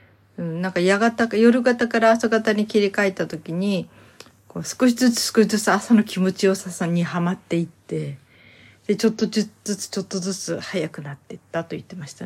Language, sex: Japanese, female